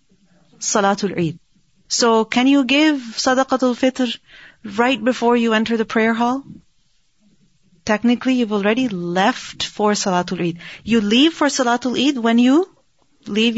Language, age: English, 30-49